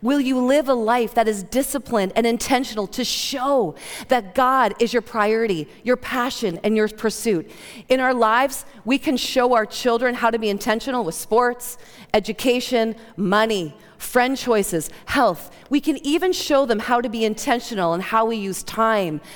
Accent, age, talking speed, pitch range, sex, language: American, 40-59, 175 wpm, 235-300 Hz, female, English